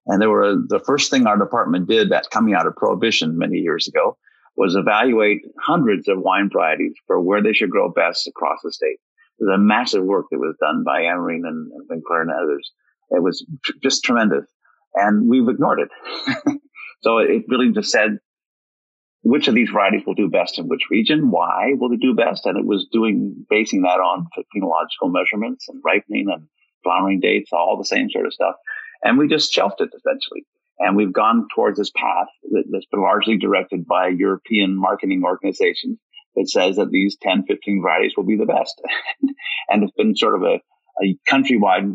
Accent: American